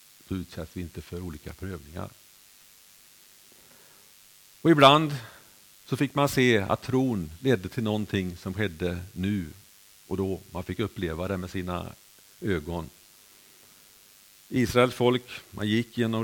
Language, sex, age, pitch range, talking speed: Swedish, male, 50-69, 90-110 Hz, 130 wpm